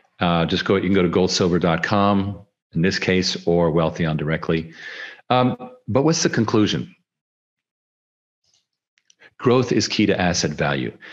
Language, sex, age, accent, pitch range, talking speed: English, male, 50-69, American, 85-110 Hz, 135 wpm